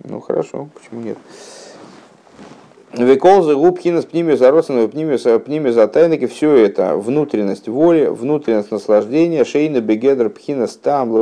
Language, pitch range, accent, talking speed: Russian, 110-155 Hz, native, 120 wpm